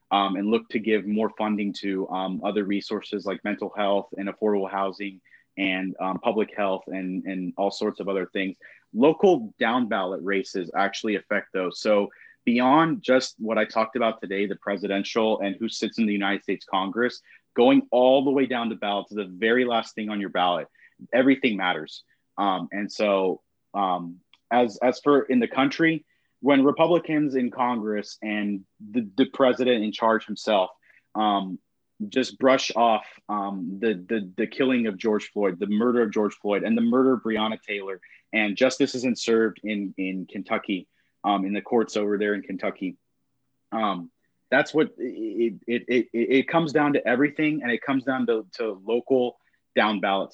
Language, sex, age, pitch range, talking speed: English, male, 30-49, 100-130 Hz, 180 wpm